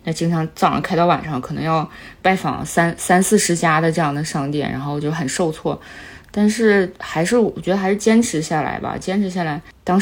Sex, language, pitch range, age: female, Chinese, 150-185 Hz, 20-39